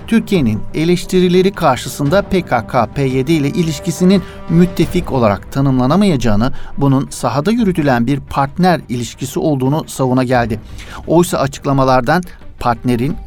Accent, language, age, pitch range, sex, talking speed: native, Turkish, 60-79, 125-165 Hz, male, 95 wpm